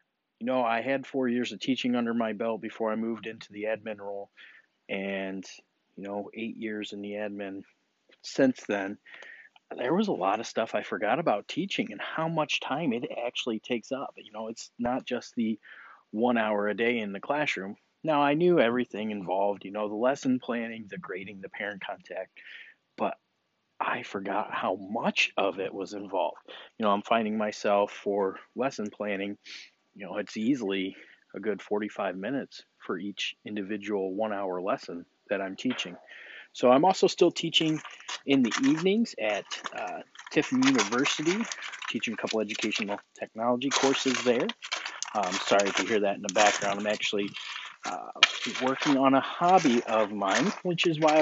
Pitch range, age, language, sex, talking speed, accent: 100-130 Hz, 30-49, English, male, 175 wpm, American